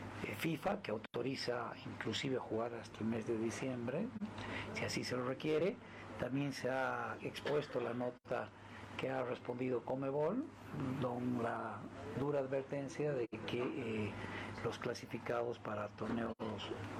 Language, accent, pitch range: Spanish, Mexican, 110-130 Hz